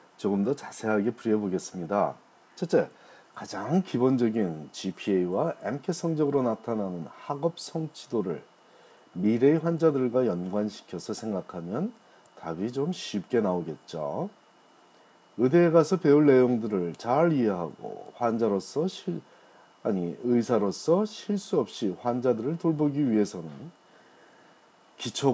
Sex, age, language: male, 40-59, Korean